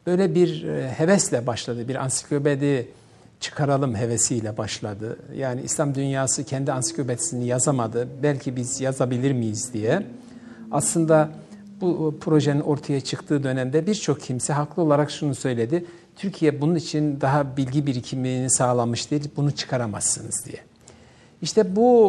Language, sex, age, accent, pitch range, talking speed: Turkish, male, 60-79, native, 130-170 Hz, 120 wpm